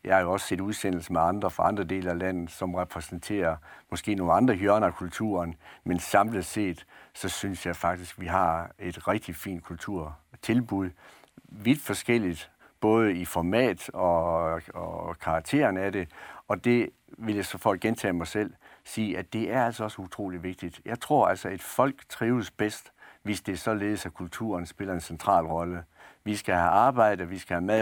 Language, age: Danish, 60-79